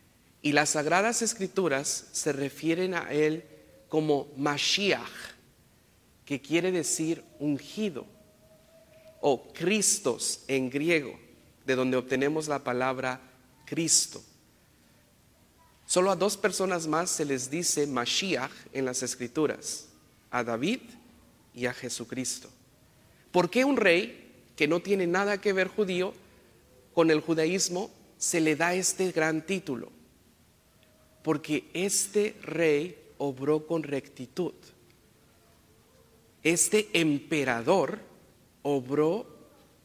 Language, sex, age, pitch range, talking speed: English, male, 50-69, 135-175 Hz, 105 wpm